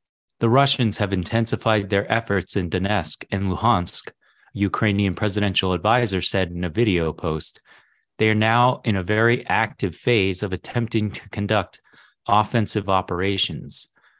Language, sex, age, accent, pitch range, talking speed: English, male, 30-49, American, 95-115 Hz, 135 wpm